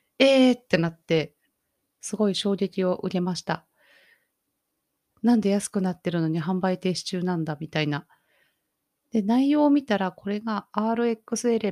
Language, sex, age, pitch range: Japanese, female, 30-49, 170-220 Hz